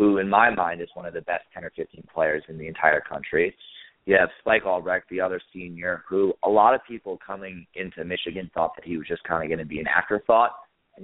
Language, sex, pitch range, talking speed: English, male, 90-110 Hz, 245 wpm